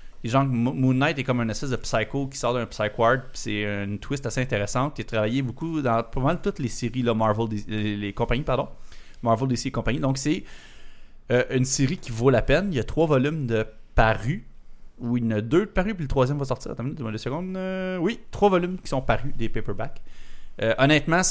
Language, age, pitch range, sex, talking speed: French, 30-49, 110-140 Hz, male, 235 wpm